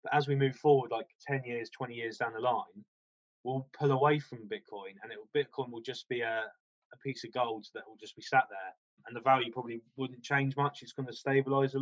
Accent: British